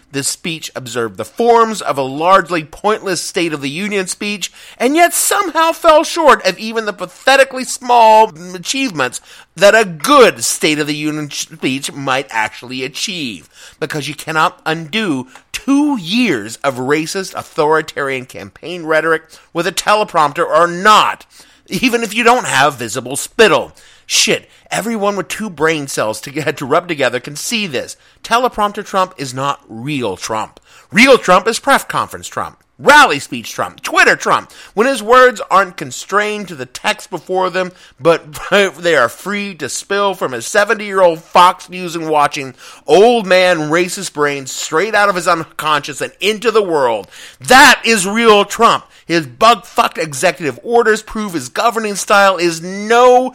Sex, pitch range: male, 155-215 Hz